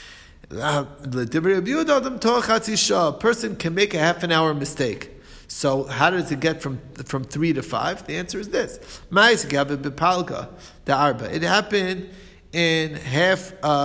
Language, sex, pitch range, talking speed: English, male, 140-185 Hz, 115 wpm